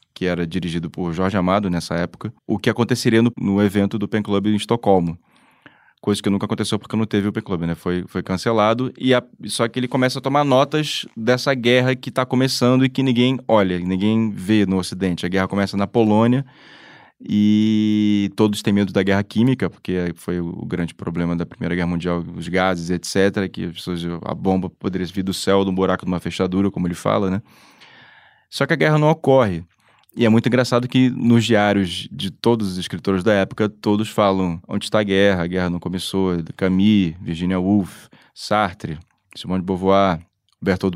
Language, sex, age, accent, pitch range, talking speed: Portuguese, male, 20-39, Brazilian, 95-125 Hz, 190 wpm